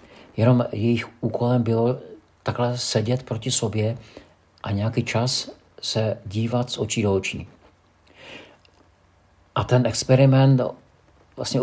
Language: Czech